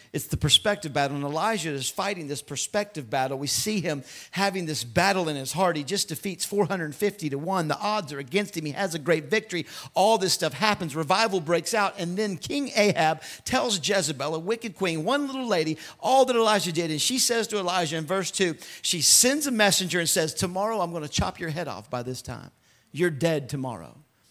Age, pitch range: 50-69, 170-245 Hz